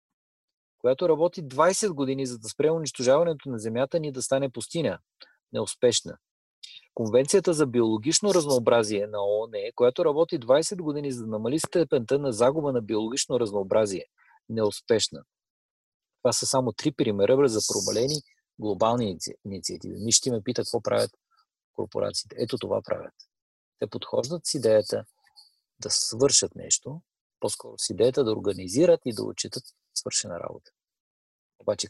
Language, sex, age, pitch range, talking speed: Bulgarian, male, 40-59, 115-190 Hz, 135 wpm